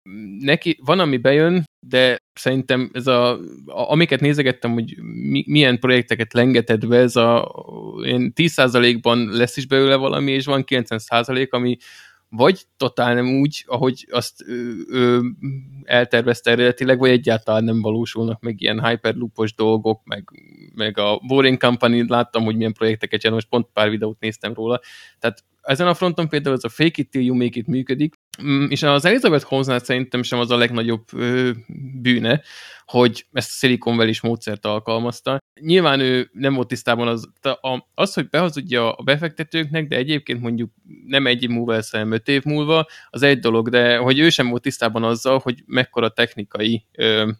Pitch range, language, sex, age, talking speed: 115-135 Hz, Hungarian, male, 20-39, 165 wpm